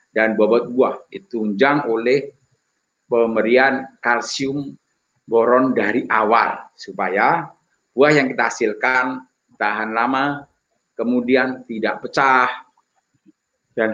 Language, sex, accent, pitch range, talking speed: Indonesian, male, native, 125-165 Hz, 85 wpm